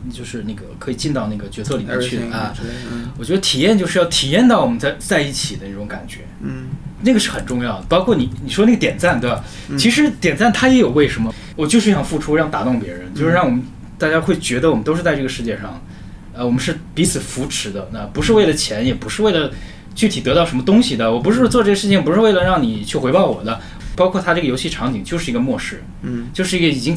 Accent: native